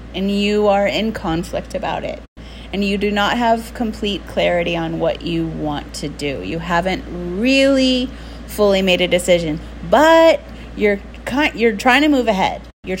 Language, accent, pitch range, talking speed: English, American, 170-225 Hz, 165 wpm